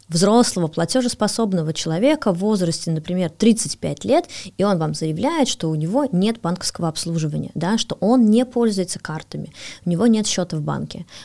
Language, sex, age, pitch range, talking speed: Russian, female, 20-39, 170-250 Hz, 155 wpm